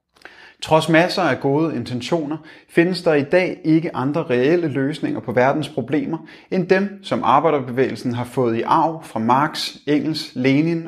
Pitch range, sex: 130-170 Hz, male